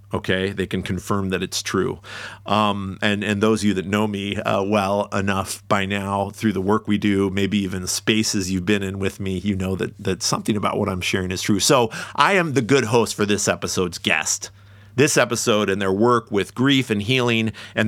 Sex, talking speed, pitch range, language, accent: male, 220 wpm, 95-110 Hz, English, American